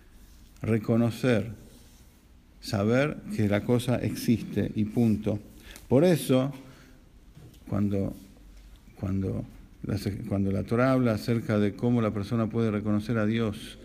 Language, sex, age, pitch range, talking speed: English, male, 50-69, 105-125 Hz, 115 wpm